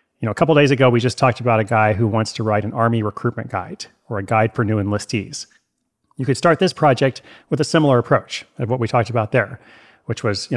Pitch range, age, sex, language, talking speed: 115-135 Hz, 30-49, male, English, 250 wpm